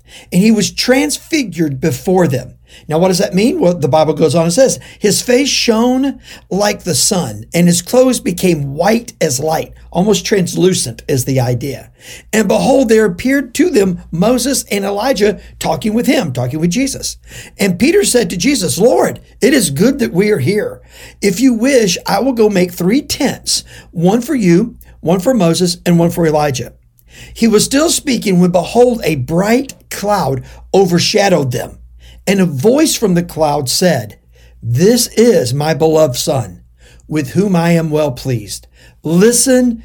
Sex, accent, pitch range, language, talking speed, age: male, American, 135-225 Hz, English, 170 wpm, 50-69